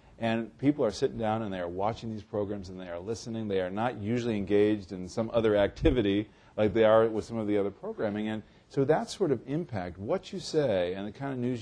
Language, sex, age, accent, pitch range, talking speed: English, male, 40-59, American, 100-130 Hz, 245 wpm